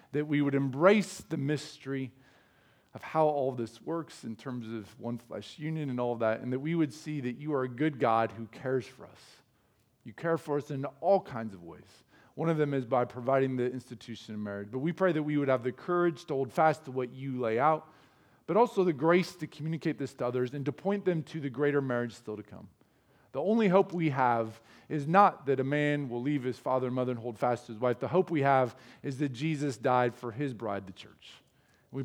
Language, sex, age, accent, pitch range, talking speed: English, male, 40-59, American, 120-150 Hz, 240 wpm